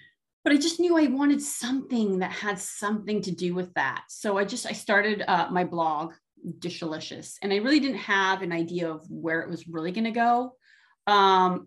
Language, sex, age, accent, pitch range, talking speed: English, female, 30-49, American, 170-215 Hz, 200 wpm